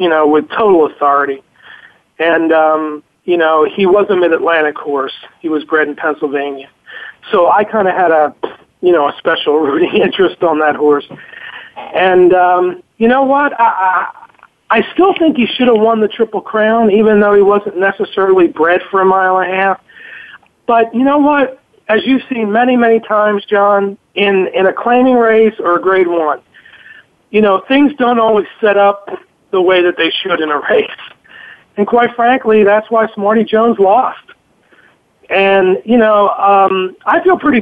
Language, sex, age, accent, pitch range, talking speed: English, male, 40-59, American, 180-230 Hz, 180 wpm